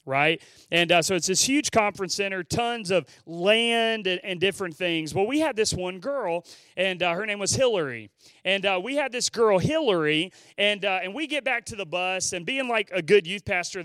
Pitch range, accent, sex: 175-255 Hz, American, male